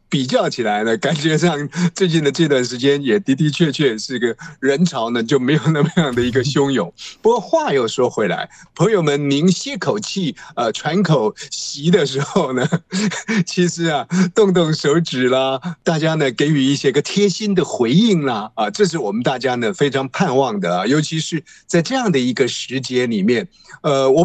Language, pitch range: Chinese, 140-190 Hz